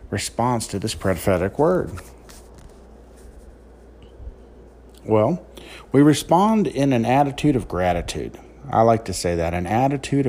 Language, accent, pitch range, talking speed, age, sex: English, American, 95-135 Hz, 115 wpm, 50-69, male